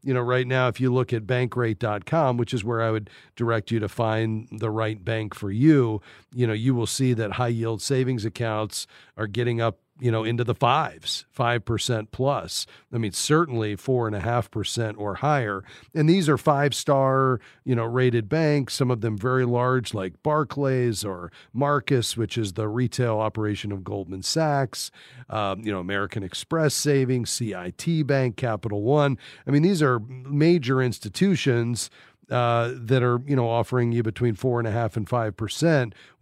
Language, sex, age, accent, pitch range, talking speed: English, male, 40-59, American, 110-135 Hz, 180 wpm